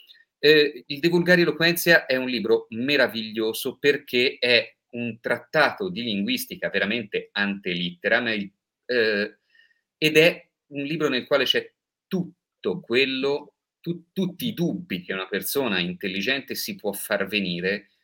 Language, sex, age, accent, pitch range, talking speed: Italian, male, 40-59, native, 100-165 Hz, 125 wpm